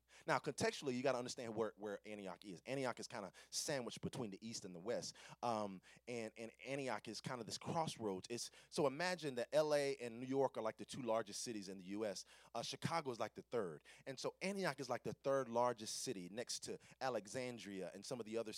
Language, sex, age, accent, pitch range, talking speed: English, male, 30-49, American, 120-185 Hz, 225 wpm